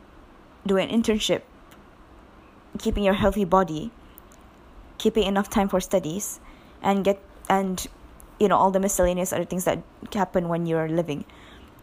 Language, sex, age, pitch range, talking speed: English, female, 20-39, 180-210 Hz, 135 wpm